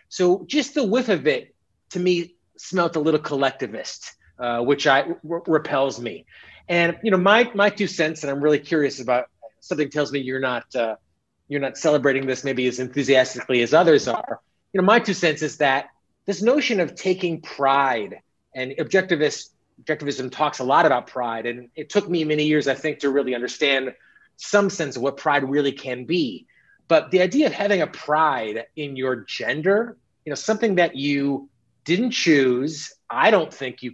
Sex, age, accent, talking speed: male, 30-49, American, 185 wpm